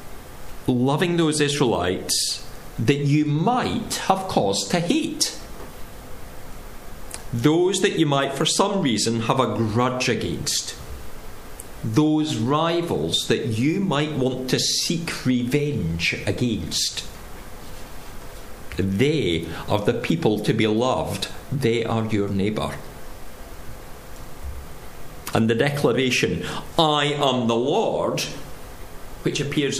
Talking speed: 105 wpm